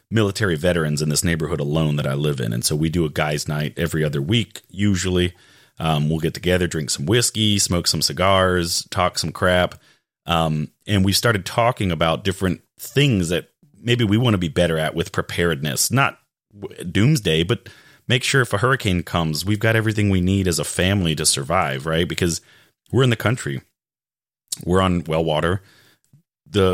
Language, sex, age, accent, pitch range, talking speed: English, male, 30-49, American, 80-105 Hz, 185 wpm